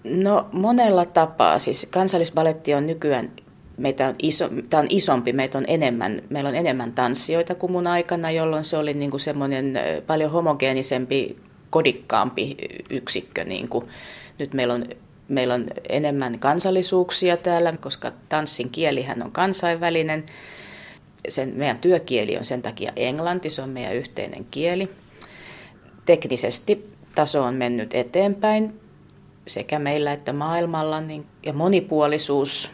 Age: 30-49